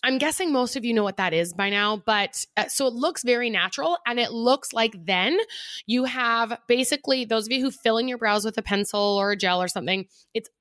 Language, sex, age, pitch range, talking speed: English, female, 20-39, 200-255 Hz, 245 wpm